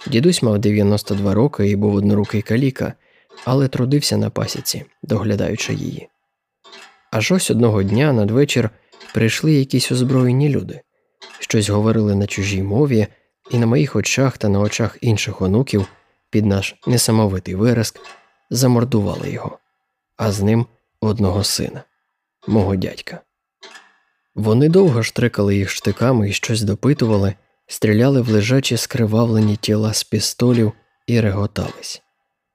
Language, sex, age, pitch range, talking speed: Ukrainian, male, 20-39, 105-125 Hz, 125 wpm